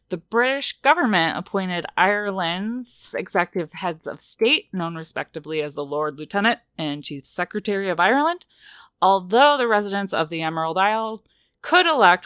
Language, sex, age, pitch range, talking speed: English, female, 20-39, 160-215 Hz, 140 wpm